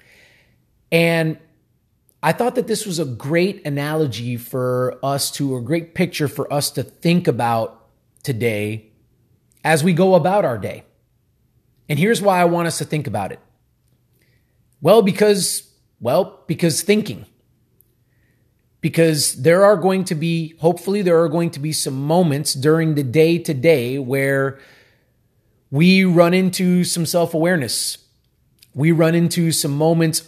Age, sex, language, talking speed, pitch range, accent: 30-49, male, English, 140 wpm, 125-175 Hz, American